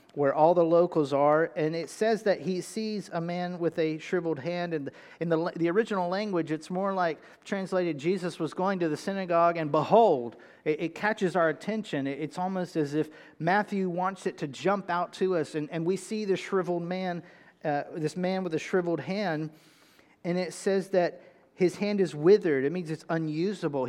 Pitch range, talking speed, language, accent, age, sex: 160-190 Hz, 195 wpm, English, American, 40-59, male